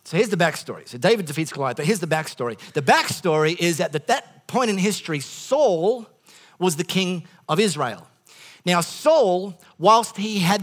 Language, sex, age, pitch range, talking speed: English, male, 40-59, 160-210 Hz, 185 wpm